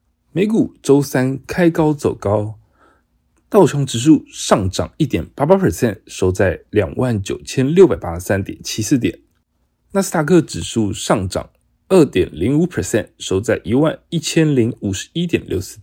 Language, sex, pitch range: Chinese, male, 100-160 Hz